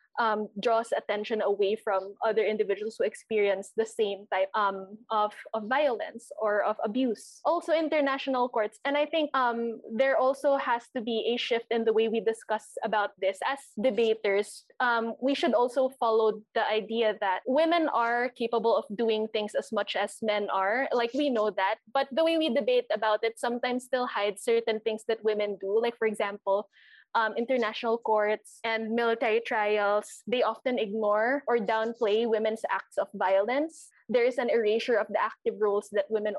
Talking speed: 180 wpm